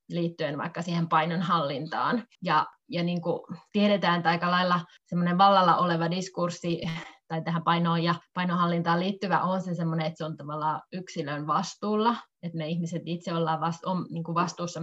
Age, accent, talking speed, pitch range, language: 20-39, native, 140 wpm, 165-185 Hz, Finnish